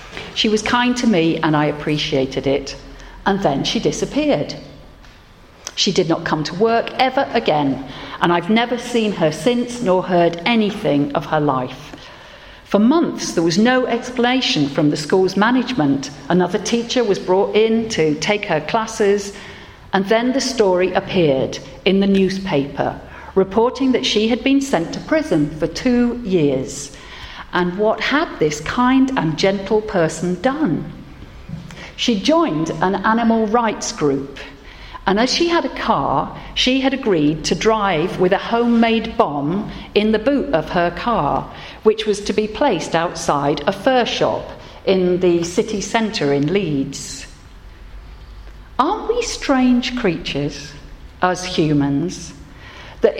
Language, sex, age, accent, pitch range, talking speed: English, female, 50-69, British, 155-235 Hz, 145 wpm